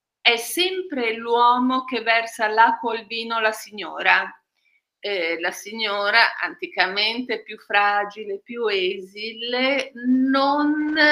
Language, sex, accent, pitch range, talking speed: Italian, female, native, 220-275 Hz, 105 wpm